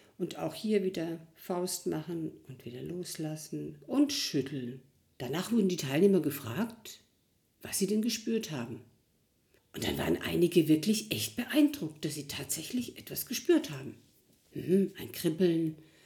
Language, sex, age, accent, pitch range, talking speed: German, female, 50-69, German, 160-225 Hz, 140 wpm